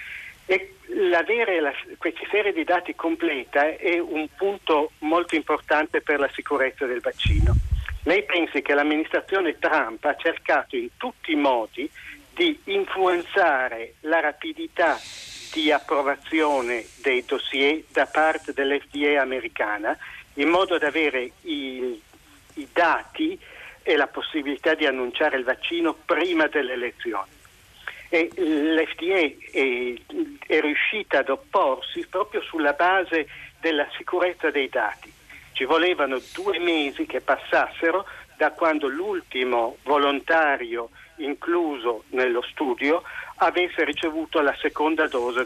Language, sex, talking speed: Italian, male, 115 wpm